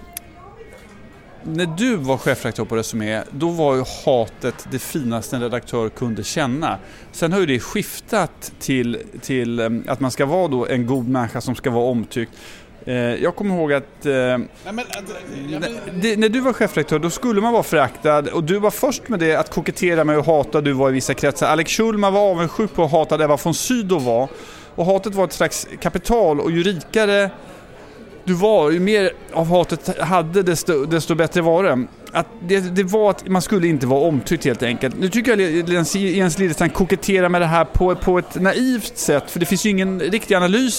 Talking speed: 190 wpm